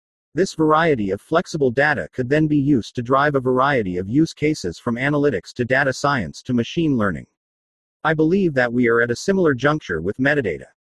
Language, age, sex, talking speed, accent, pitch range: English, 50-69, male, 195 wpm, American, 115-155 Hz